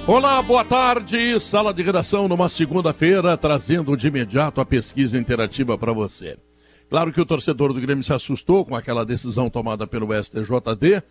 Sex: male